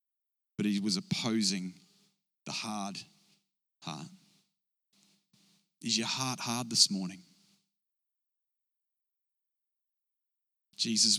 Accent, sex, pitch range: Australian, male, 125-175 Hz